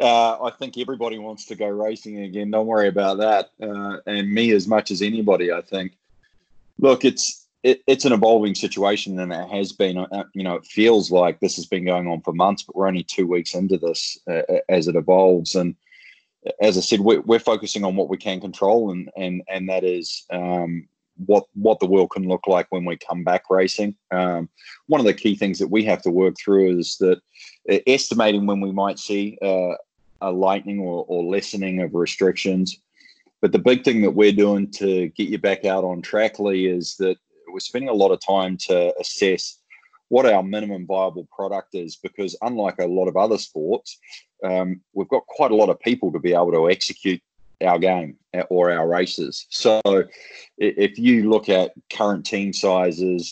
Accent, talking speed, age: Australian, 195 wpm, 20-39